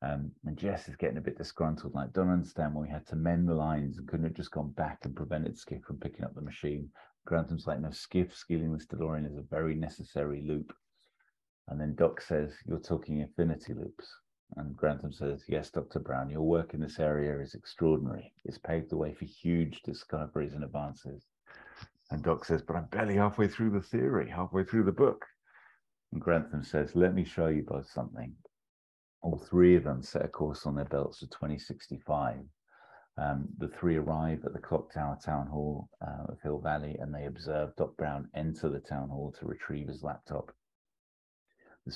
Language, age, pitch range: English, 40-59, 75-80 Hz